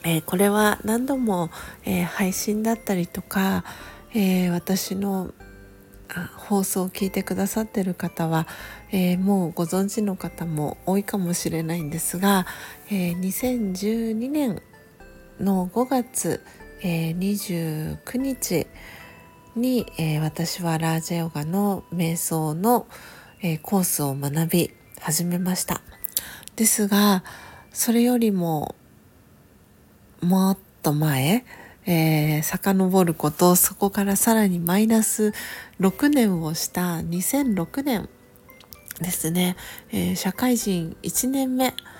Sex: female